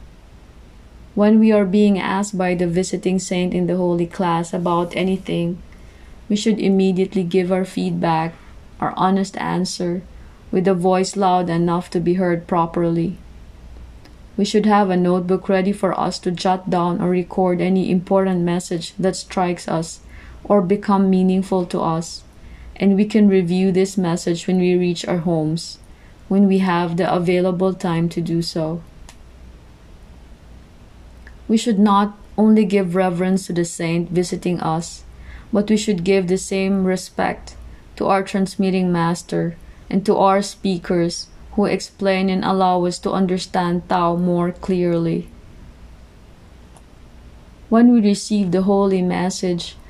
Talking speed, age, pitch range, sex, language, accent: 145 wpm, 20-39, 170-195 Hz, female, English, Filipino